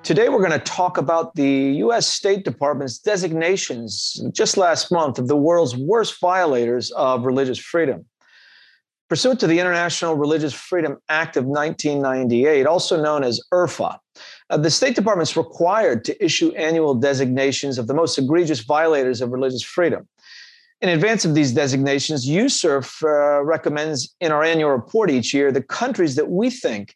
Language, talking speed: English, 155 wpm